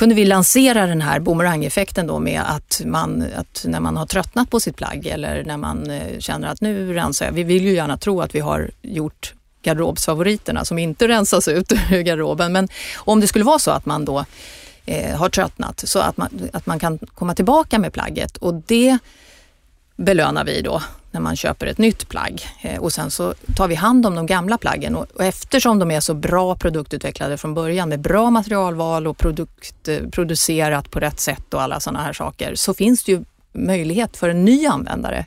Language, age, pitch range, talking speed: Swedish, 30-49, 155-210 Hz, 195 wpm